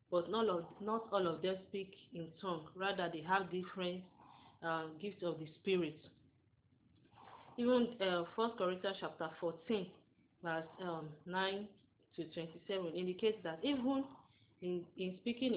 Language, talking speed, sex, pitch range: English, 125 wpm, female, 170-210 Hz